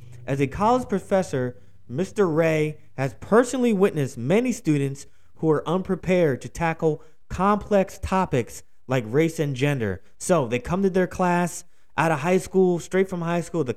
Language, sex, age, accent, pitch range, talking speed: English, male, 20-39, American, 140-190 Hz, 160 wpm